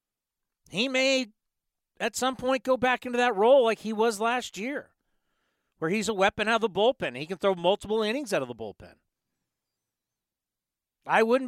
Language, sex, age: English, male, 40-59